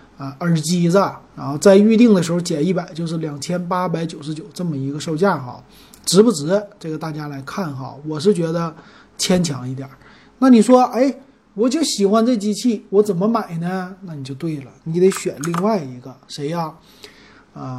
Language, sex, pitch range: Chinese, male, 155-210 Hz